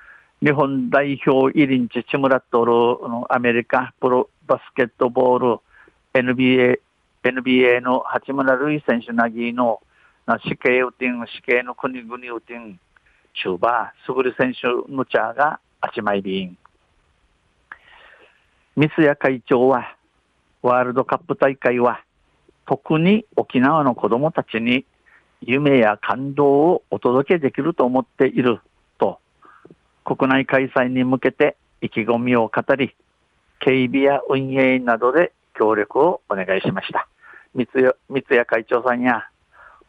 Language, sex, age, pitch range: Japanese, male, 50-69, 120-135 Hz